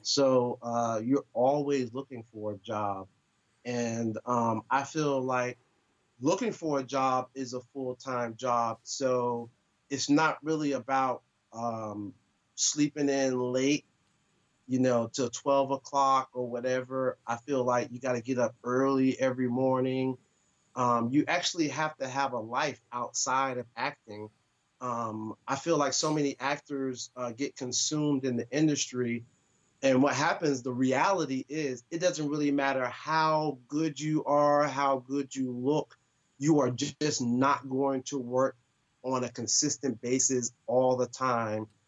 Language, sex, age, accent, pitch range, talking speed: English, male, 30-49, American, 120-140 Hz, 150 wpm